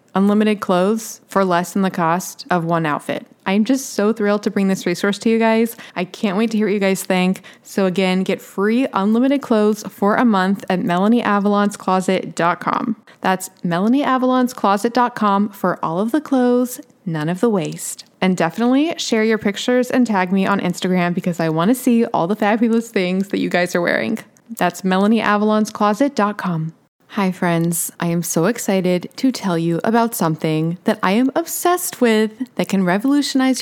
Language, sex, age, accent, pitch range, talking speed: English, female, 20-39, American, 180-230 Hz, 175 wpm